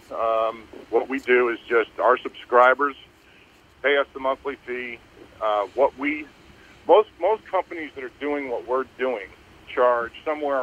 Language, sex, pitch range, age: English, male, 110-135 Hz, 50-69